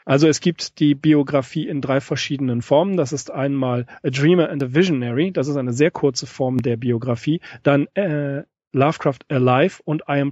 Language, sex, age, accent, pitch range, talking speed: German, male, 40-59, German, 135-170 Hz, 185 wpm